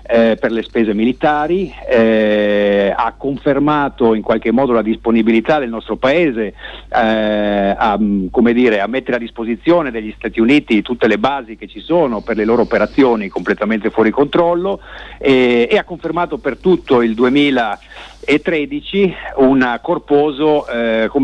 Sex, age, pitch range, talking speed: male, 50-69, 110-145 Hz, 135 wpm